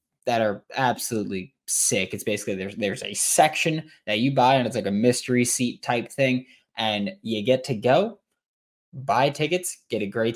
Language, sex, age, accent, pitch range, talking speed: English, male, 20-39, American, 115-160 Hz, 180 wpm